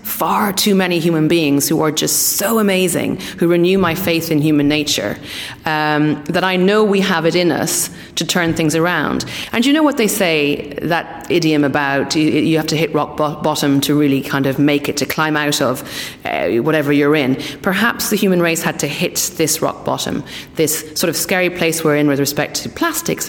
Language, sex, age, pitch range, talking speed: English, female, 30-49, 150-185 Hz, 205 wpm